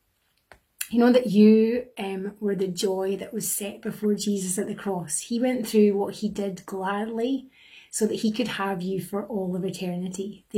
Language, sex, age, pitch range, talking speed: English, female, 30-49, 195-220 Hz, 195 wpm